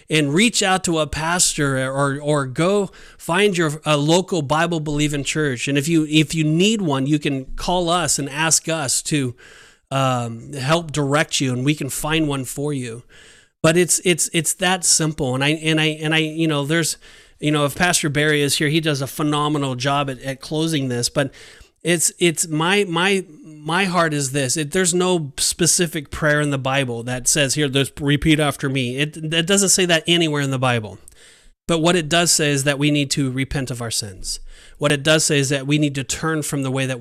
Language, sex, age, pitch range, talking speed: English, male, 30-49, 135-160 Hz, 215 wpm